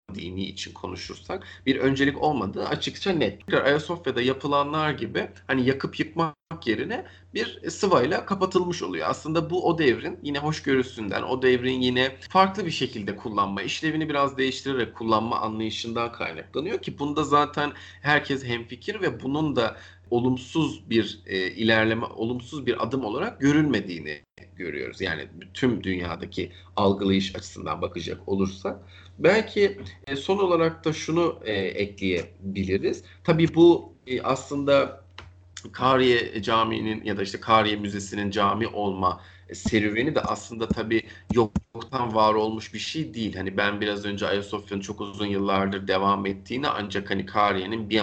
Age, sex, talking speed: 40-59, male, 130 wpm